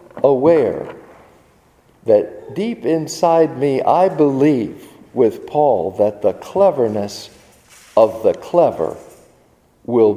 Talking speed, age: 95 wpm, 50-69